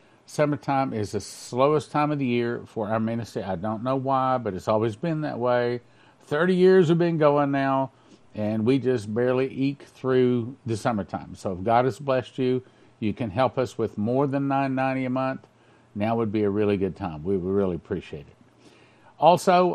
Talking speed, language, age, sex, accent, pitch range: 195 wpm, English, 50-69, male, American, 110-140 Hz